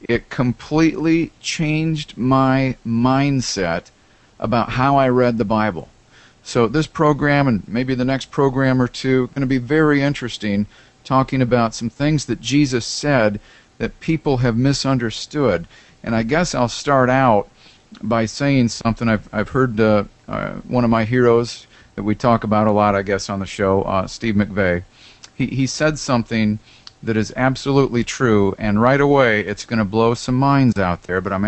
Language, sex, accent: English, male, American